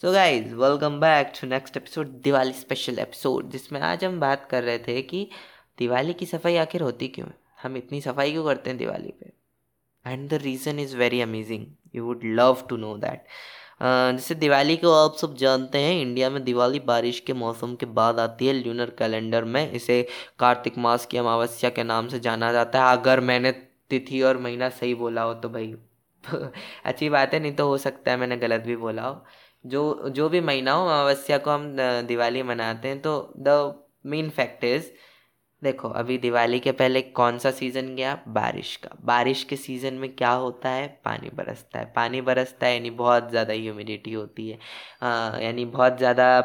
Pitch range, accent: 120-140 Hz, native